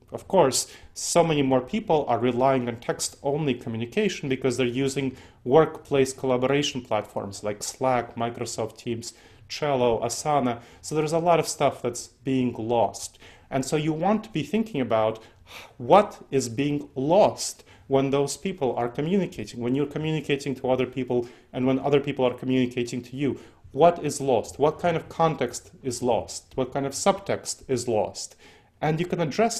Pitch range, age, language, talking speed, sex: 120-145 Hz, 30-49, English, 165 wpm, male